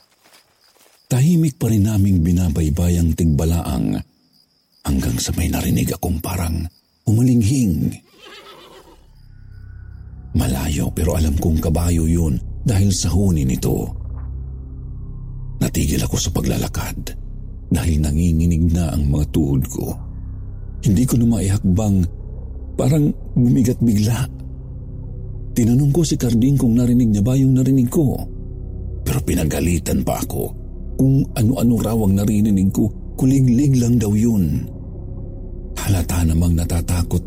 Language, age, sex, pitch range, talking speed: Filipino, 50-69, male, 85-120 Hz, 110 wpm